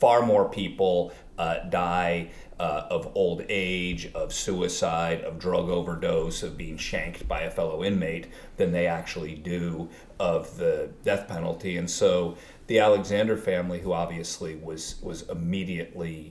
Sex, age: male, 40-59